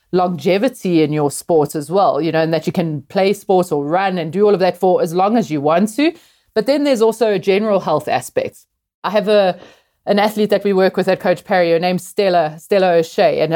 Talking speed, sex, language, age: 240 wpm, female, English, 30-49